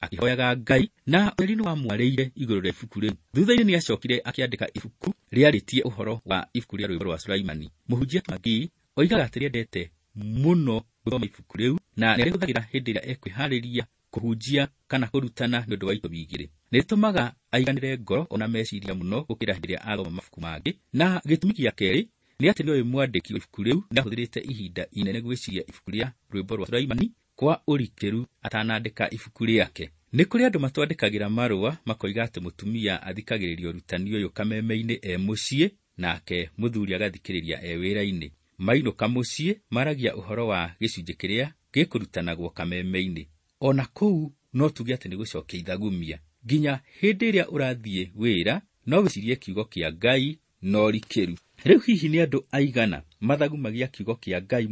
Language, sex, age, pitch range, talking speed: English, male, 40-59, 95-135 Hz, 145 wpm